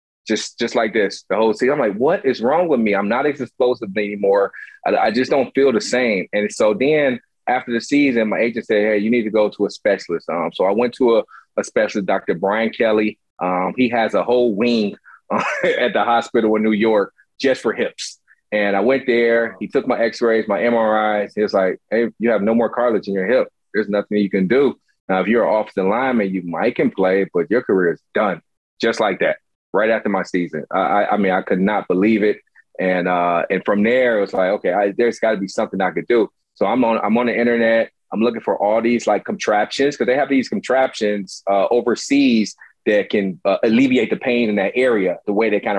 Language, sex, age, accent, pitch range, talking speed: English, male, 30-49, American, 100-120 Hz, 235 wpm